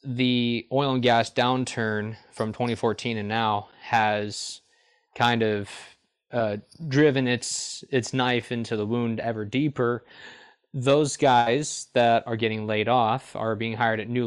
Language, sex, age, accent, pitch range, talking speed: English, male, 20-39, American, 110-130 Hz, 145 wpm